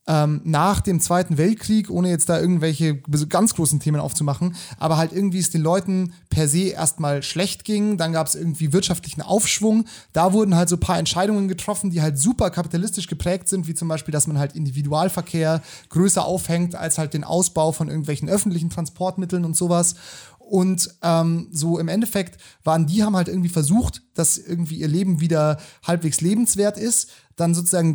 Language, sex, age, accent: German, male, 30-49, German